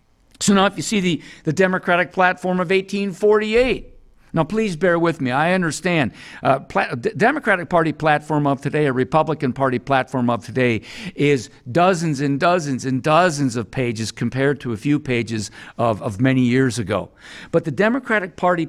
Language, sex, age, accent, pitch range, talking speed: English, male, 50-69, American, 135-185 Hz, 165 wpm